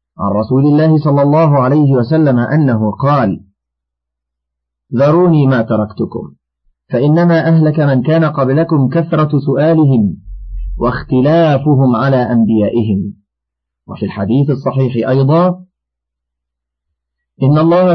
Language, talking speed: Arabic, 95 wpm